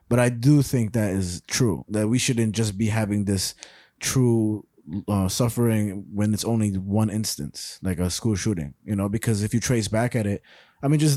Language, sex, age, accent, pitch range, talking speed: English, male, 20-39, American, 100-120 Hz, 205 wpm